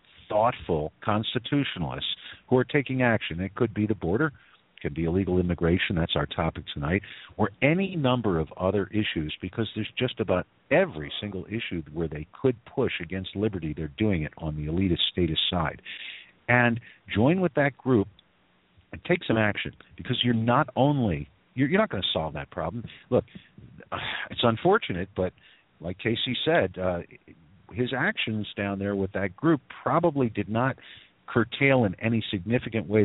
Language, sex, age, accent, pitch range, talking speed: English, male, 50-69, American, 85-115 Hz, 165 wpm